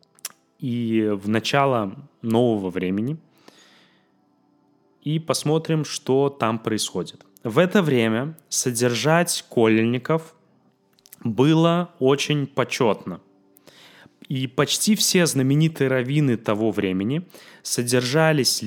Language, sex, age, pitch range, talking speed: Russian, male, 20-39, 110-150 Hz, 85 wpm